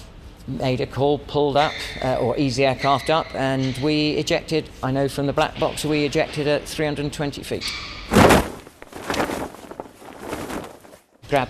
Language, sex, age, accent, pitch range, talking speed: English, male, 40-59, British, 110-135 Hz, 130 wpm